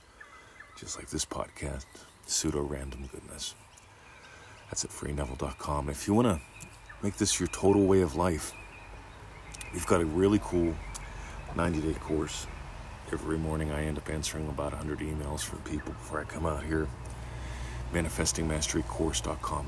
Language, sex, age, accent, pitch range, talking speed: English, male, 40-59, American, 70-95 Hz, 140 wpm